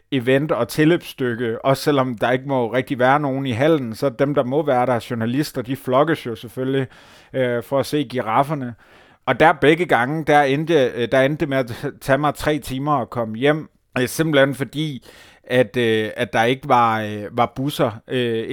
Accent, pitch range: native, 120-140 Hz